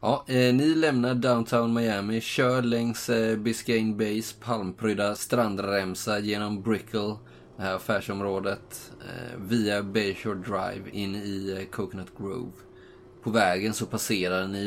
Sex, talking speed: male, 115 wpm